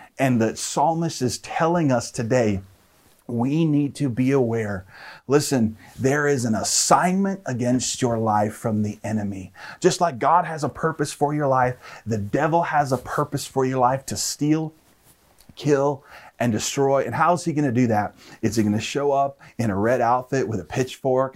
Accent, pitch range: American, 115-145 Hz